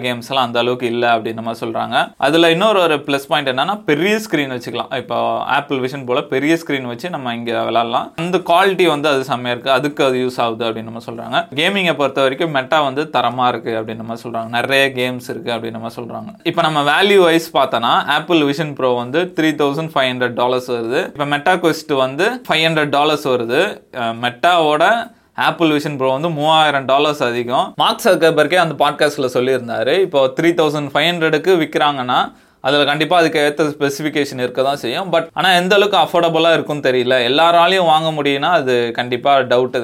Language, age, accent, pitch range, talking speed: Tamil, 20-39, native, 130-165 Hz, 165 wpm